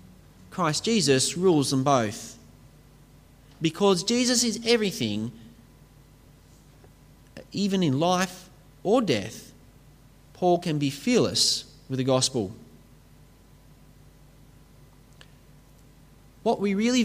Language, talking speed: English, 85 wpm